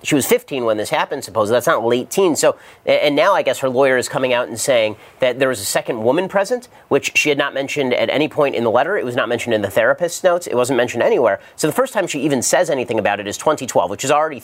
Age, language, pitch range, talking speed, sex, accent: 30-49, English, 125-155 Hz, 285 wpm, male, American